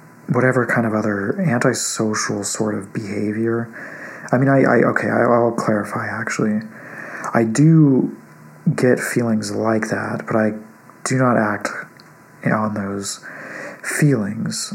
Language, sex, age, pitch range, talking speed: English, male, 40-59, 105-125 Hz, 120 wpm